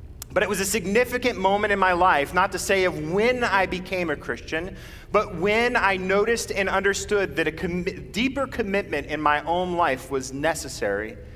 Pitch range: 150-215 Hz